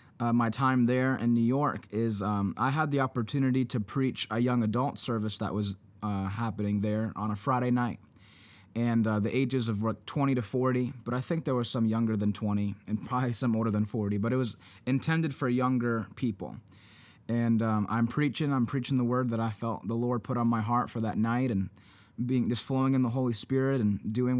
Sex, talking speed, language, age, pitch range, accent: male, 220 wpm, English, 20-39, 110-130 Hz, American